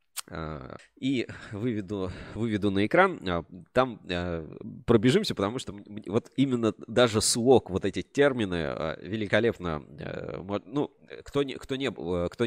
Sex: male